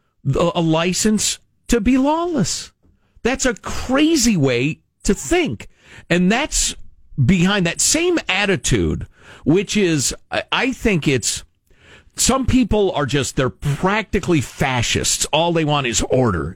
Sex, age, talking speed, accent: male, 50-69, 125 wpm, American